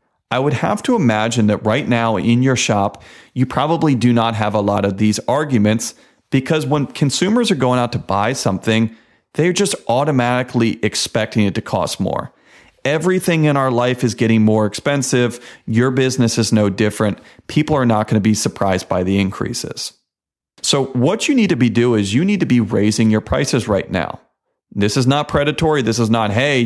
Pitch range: 110-140 Hz